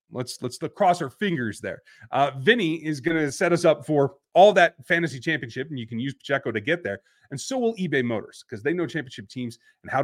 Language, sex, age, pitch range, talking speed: English, male, 30-49, 130-175 Hz, 235 wpm